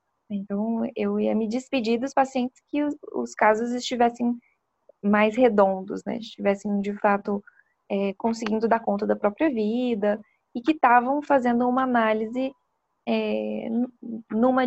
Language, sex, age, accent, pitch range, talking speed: Portuguese, female, 10-29, Brazilian, 205-245 Hz, 125 wpm